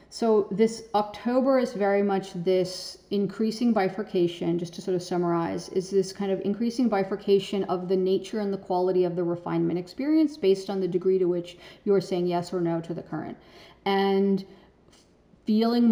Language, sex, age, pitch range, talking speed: English, female, 40-59, 180-200 Hz, 175 wpm